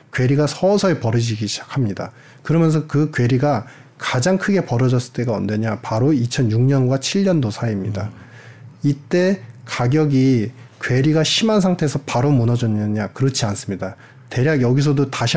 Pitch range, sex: 120-155 Hz, male